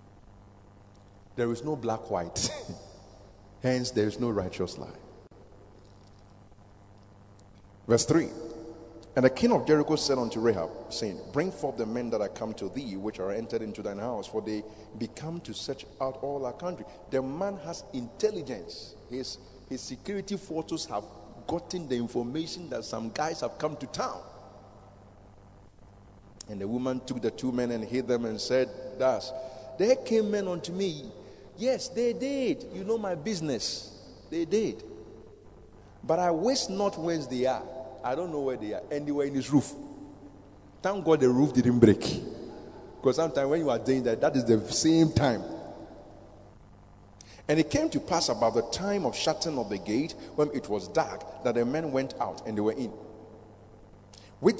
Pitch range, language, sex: 100-160 Hz, English, male